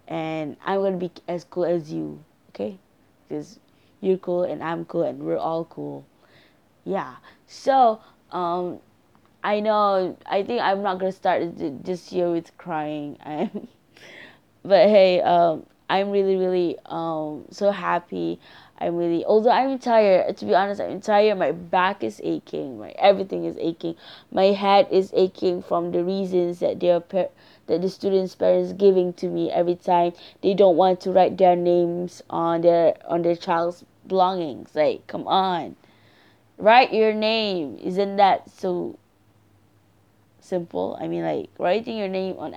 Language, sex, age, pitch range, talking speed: English, female, 20-39, 165-190 Hz, 155 wpm